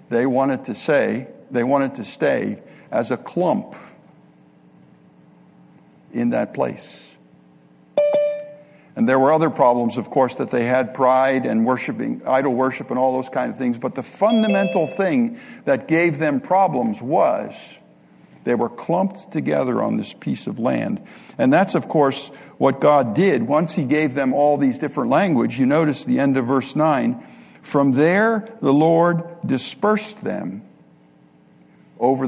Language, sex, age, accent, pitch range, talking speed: English, male, 60-79, American, 130-195 Hz, 150 wpm